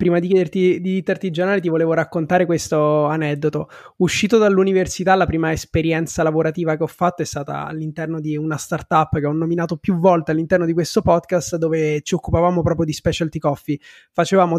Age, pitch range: 20-39, 165-190 Hz